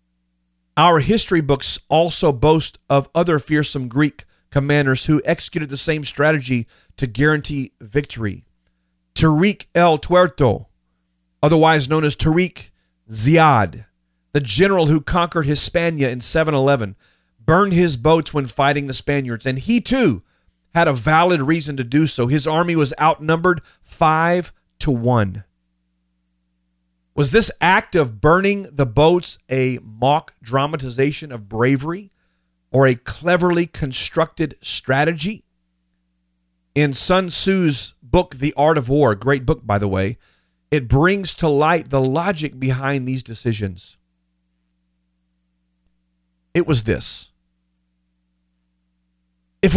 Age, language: 40-59, English